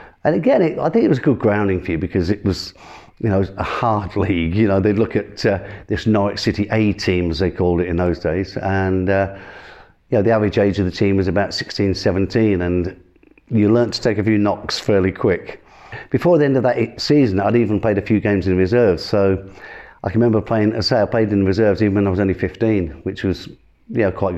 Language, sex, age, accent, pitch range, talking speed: English, male, 50-69, British, 95-110 Hz, 240 wpm